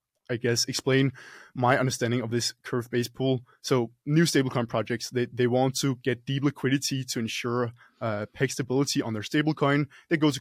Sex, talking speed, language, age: male, 185 wpm, English, 20-39